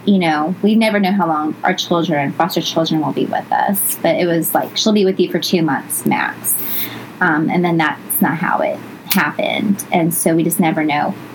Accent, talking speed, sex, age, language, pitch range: American, 215 wpm, female, 20-39, English, 165-205 Hz